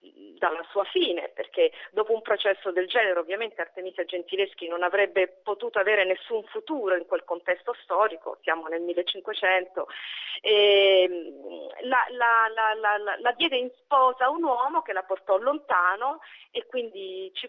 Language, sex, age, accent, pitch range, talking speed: Italian, female, 40-59, native, 180-265 Hz, 155 wpm